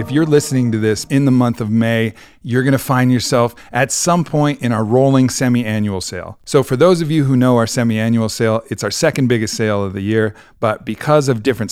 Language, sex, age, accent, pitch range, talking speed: English, male, 40-59, American, 110-135 Hz, 225 wpm